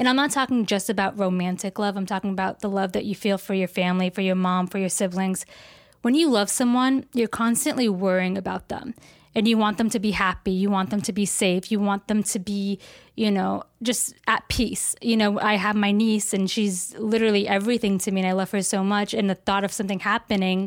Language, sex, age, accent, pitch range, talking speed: English, female, 20-39, American, 190-220 Hz, 235 wpm